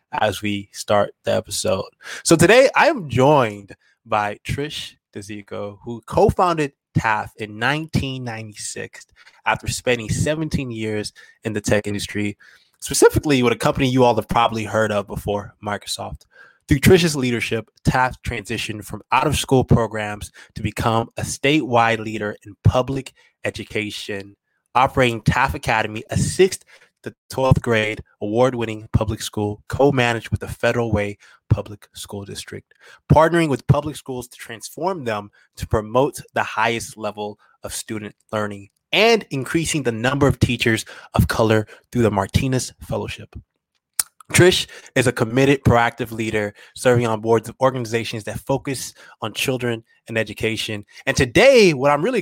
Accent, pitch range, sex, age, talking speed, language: American, 105-130 Hz, male, 20-39, 140 wpm, English